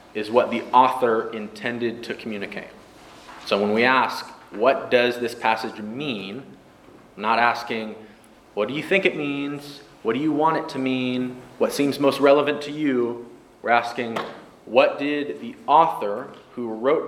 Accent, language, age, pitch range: American, English, 20-39, 110-140 Hz